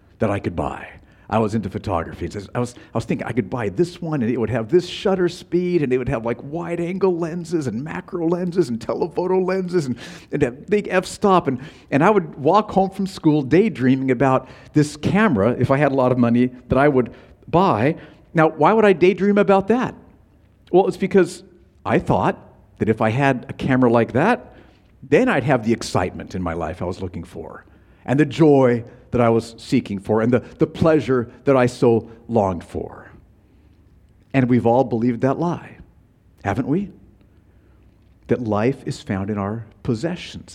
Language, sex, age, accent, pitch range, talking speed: English, male, 50-69, American, 105-170 Hz, 190 wpm